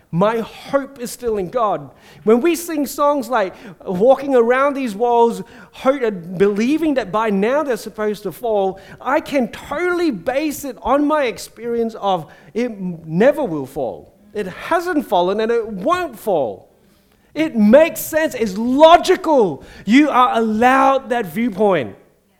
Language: English